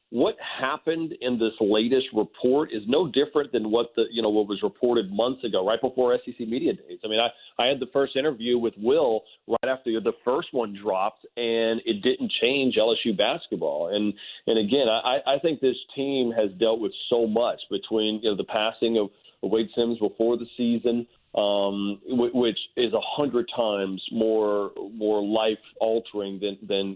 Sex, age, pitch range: male, 40-59, 105-125 Hz